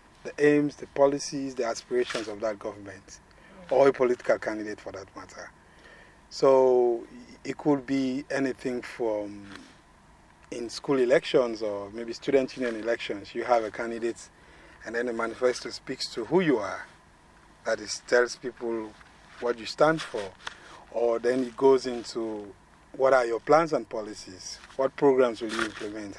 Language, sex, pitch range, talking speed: English, male, 115-140 Hz, 155 wpm